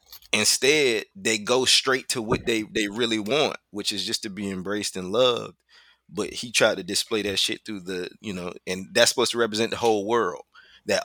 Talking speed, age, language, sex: 205 wpm, 20-39, English, male